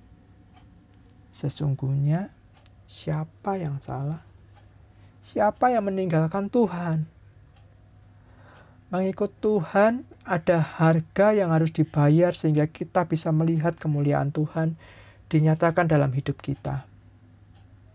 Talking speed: 85 wpm